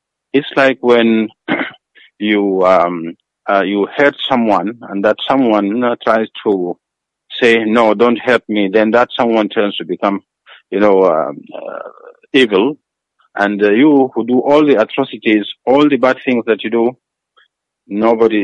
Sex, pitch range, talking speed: male, 100-125 Hz, 155 wpm